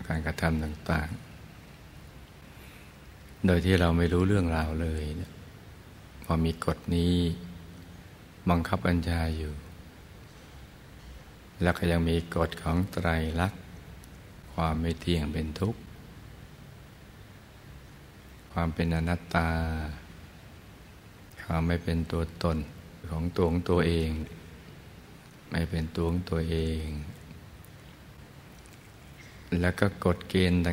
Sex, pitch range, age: male, 80-90 Hz, 60-79